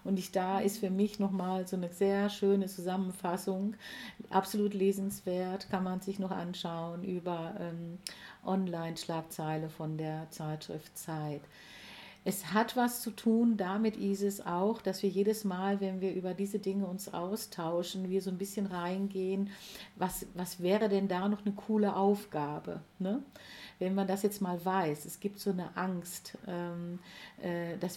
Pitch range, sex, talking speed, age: 175-200 Hz, female, 155 wpm, 50-69